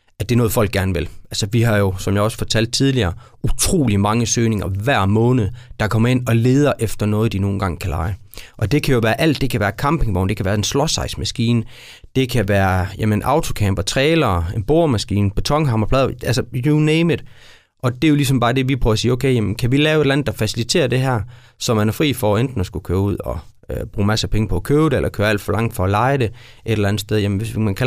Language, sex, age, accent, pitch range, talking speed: Danish, male, 30-49, native, 100-125 Hz, 255 wpm